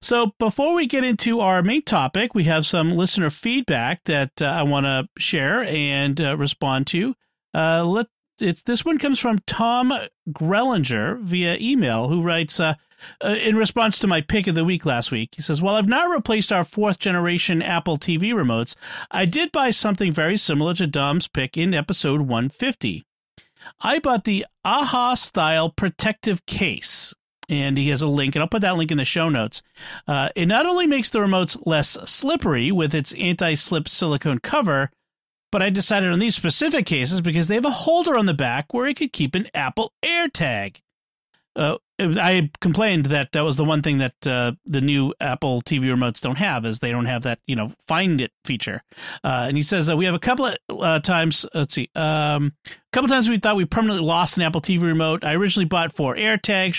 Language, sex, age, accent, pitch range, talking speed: English, male, 40-59, American, 150-215 Hz, 200 wpm